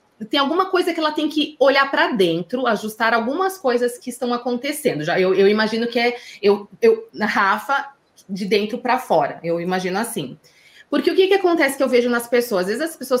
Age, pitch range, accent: 20-39, 200-285 Hz, Brazilian